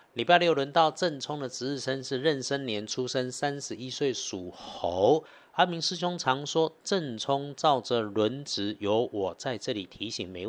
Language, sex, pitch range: Chinese, male, 110-150 Hz